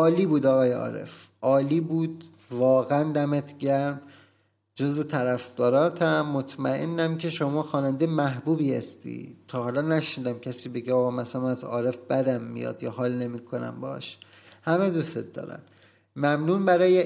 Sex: male